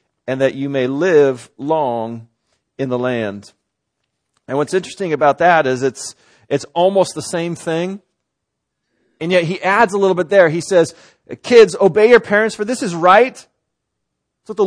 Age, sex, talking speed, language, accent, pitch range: 40-59, male, 170 wpm, English, American, 140-205 Hz